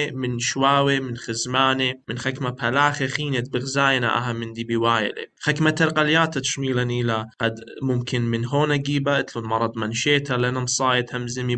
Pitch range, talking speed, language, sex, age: 120-145 Hz, 130 wpm, English, male, 20-39